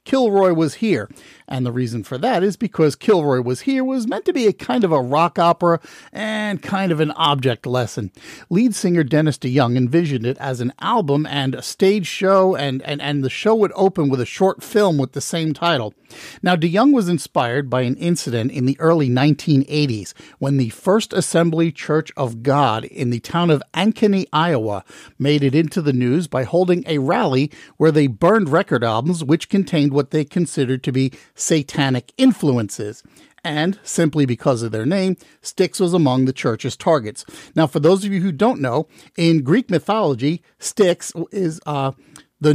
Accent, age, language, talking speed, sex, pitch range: American, 50-69, English, 185 wpm, male, 130-180 Hz